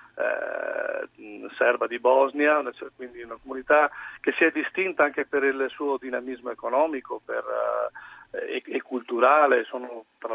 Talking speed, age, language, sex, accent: 145 wpm, 40-59, Italian, male, native